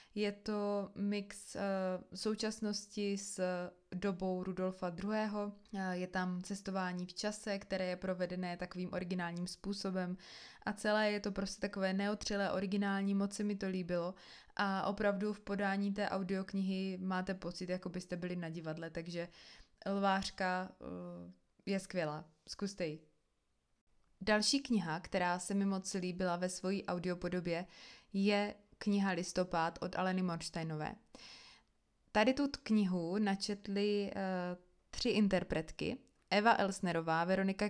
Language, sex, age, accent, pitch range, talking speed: Czech, female, 20-39, native, 180-205 Hz, 125 wpm